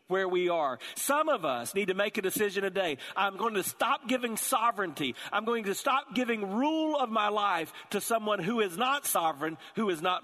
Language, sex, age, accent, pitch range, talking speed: English, male, 40-59, American, 185-240 Hz, 210 wpm